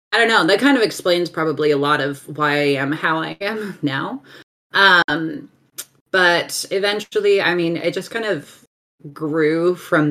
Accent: American